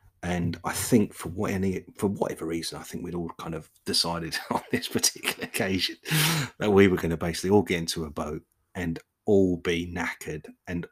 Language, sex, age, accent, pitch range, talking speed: English, male, 30-49, British, 85-95 Hz, 200 wpm